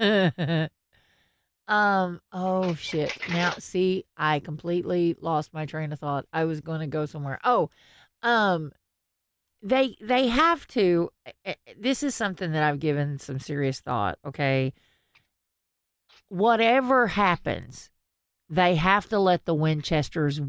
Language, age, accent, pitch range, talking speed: English, 40-59, American, 145-185 Hz, 125 wpm